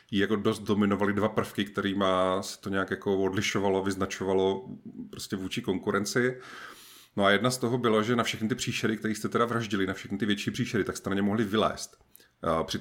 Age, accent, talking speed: 30-49, native, 200 wpm